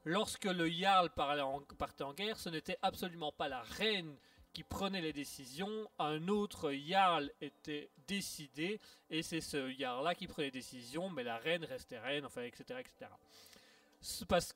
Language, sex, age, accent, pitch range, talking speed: French, male, 40-59, French, 155-215 Hz, 170 wpm